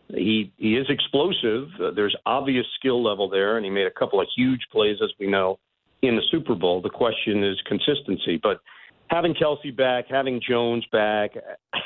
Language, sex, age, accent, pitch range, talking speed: English, male, 50-69, American, 100-125 Hz, 185 wpm